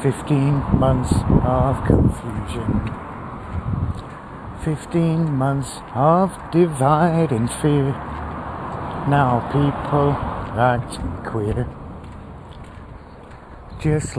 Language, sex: English, male